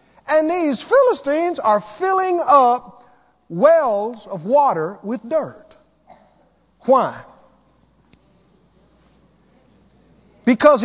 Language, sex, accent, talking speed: English, male, American, 70 wpm